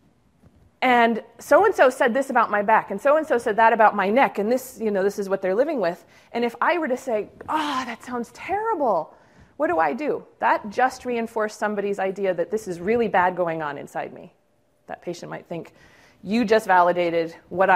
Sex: female